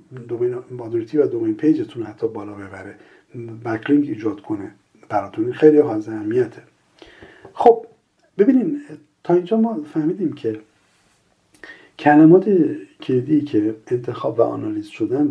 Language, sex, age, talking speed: Persian, male, 50-69, 100 wpm